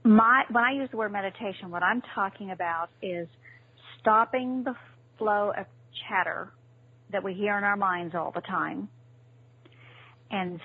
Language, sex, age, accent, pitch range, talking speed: English, female, 40-59, American, 135-200 Hz, 150 wpm